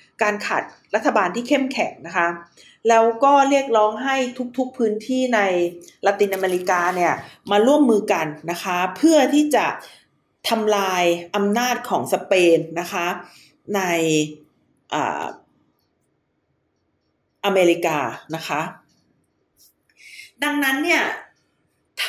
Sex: female